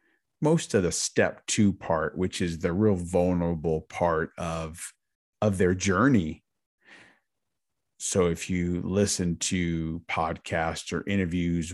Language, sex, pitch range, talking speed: English, male, 85-100 Hz, 125 wpm